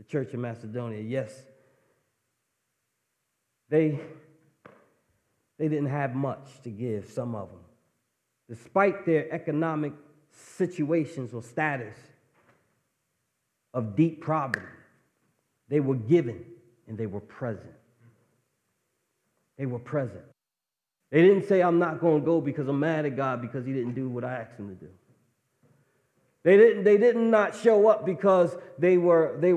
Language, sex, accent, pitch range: English, male, American, 125-160 Hz